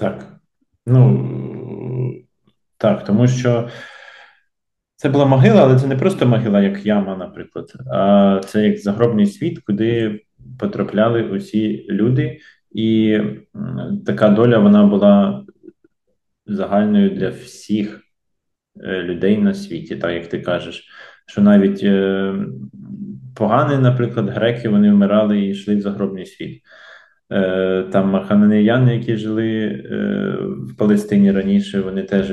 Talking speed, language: 115 wpm, Ukrainian